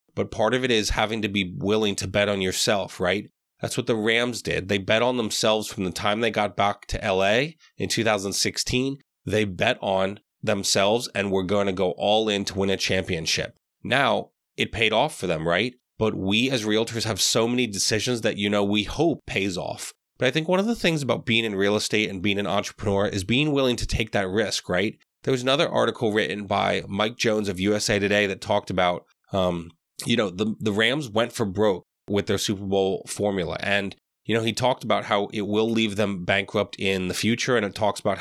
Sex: male